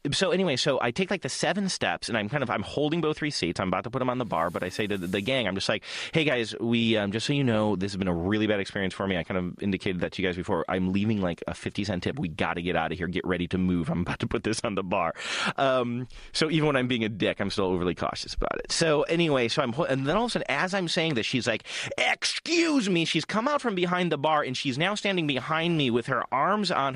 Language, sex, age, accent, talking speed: English, male, 30-49, American, 305 wpm